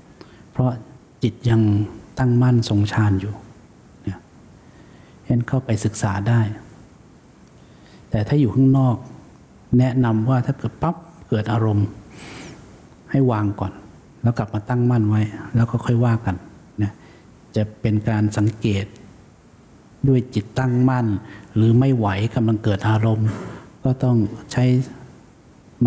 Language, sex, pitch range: English, male, 105-125 Hz